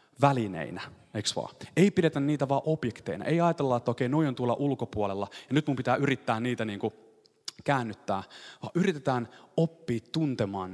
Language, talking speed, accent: Finnish, 155 wpm, native